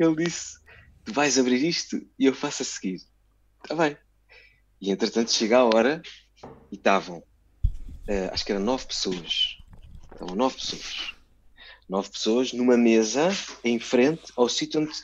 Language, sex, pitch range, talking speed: Portuguese, male, 105-150 Hz, 150 wpm